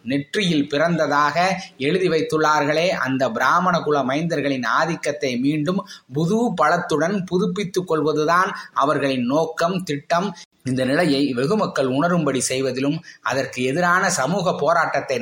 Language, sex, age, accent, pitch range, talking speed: Tamil, male, 20-39, native, 140-175 Hz, 100 wpm